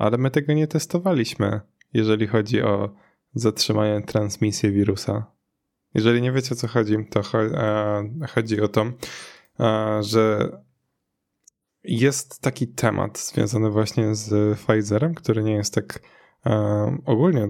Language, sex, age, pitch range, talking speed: Polish, male, 10-29, 105-125 Hz, 115 wpm